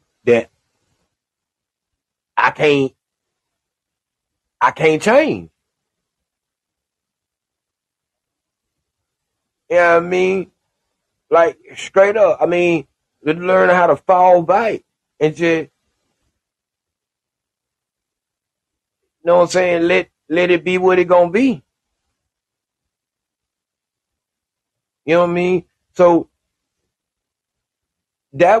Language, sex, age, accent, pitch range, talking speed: English, male, 30-49, American, 130-180 Hz, 90 wpm